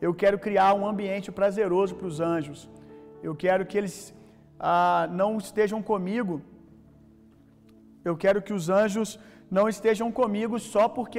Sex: male